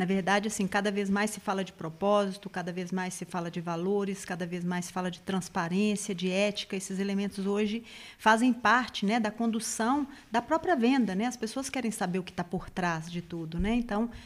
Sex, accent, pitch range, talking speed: female, Brazilian, 195-245 Hz, 215 wpm